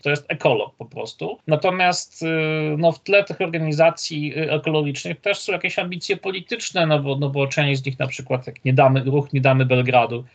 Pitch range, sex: 130-155 Hz, male